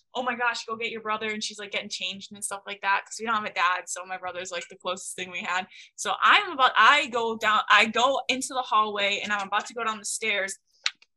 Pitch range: 205-250 Hz